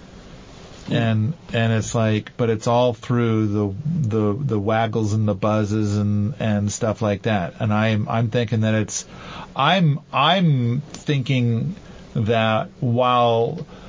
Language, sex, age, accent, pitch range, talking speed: English, male, 40-59, American, 105-125 Hz, 135 wpm